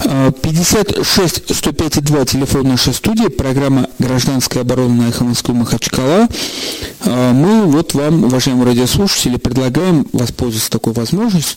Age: 40-59